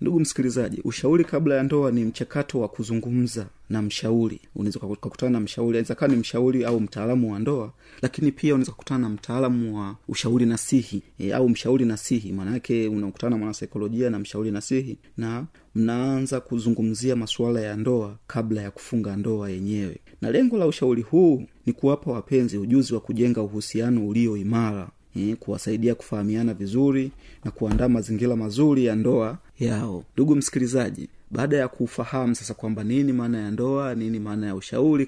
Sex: male